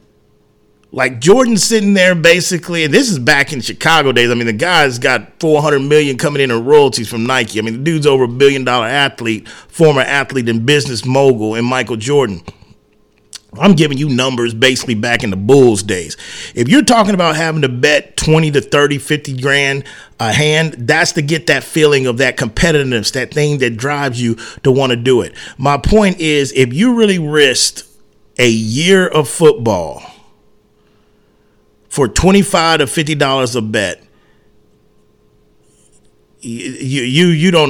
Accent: American